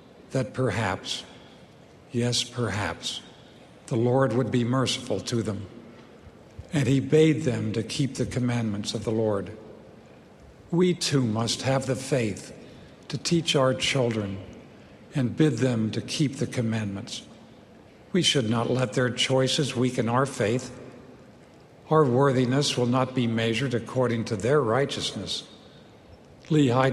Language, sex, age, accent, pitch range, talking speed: English, male, 60-79, American, 120-135 Hz, 130 wpm